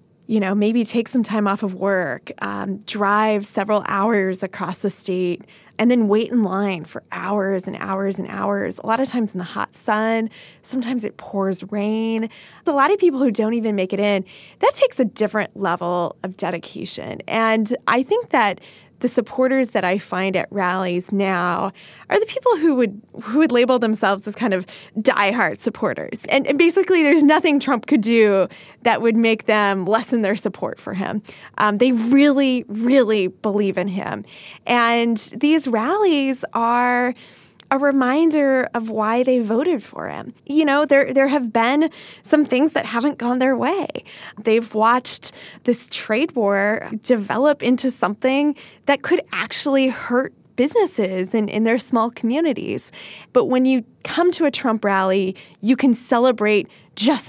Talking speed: 170 wpm